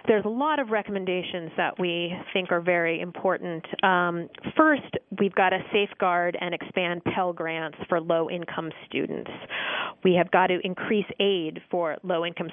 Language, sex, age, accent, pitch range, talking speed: English, female, 30-49, American, 175-220 Hz, 155 wpm